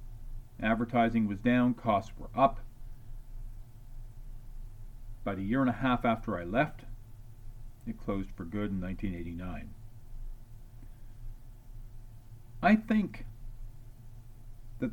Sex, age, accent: male, 50-69, American